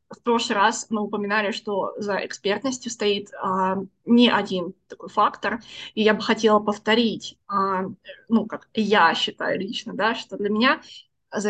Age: 20-39